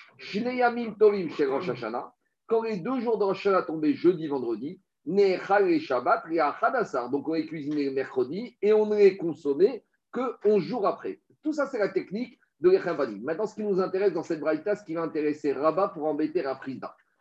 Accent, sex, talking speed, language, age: French, male, 175 wpm, French, 50-69